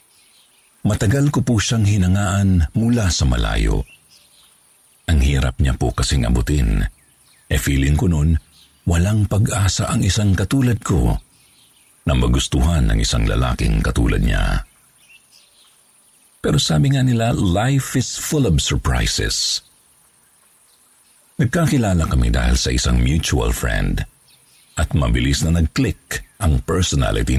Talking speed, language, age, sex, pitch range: 115 wpm, Filipino, 50-69, male, 80-115 Hz